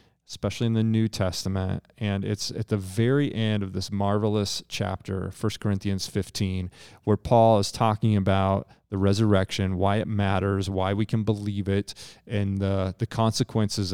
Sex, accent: male, American